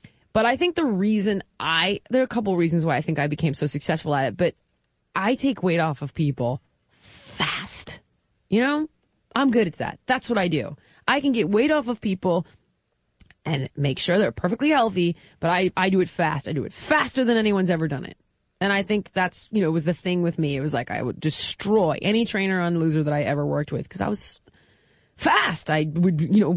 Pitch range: 170-245 Hz